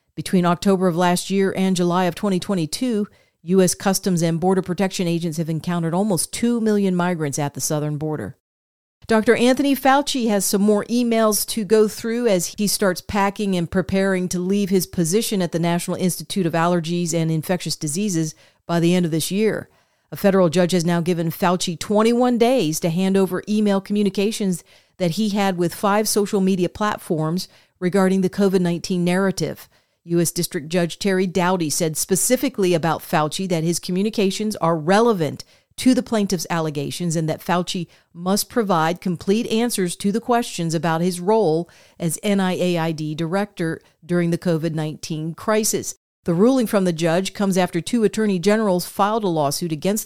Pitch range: 170-200 Hz